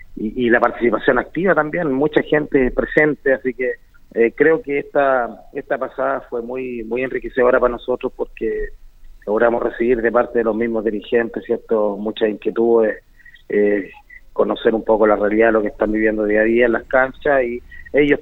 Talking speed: 180 wpm